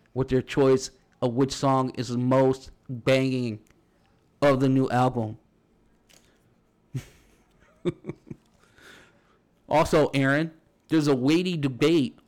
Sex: male